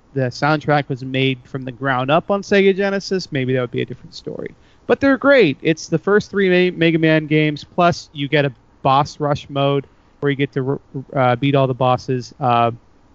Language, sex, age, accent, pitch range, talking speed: English, male, 30-49, American, 130-175 Hz, 205 wpm